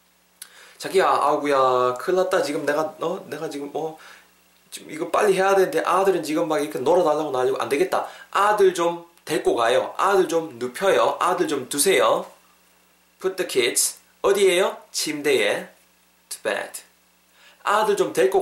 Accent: native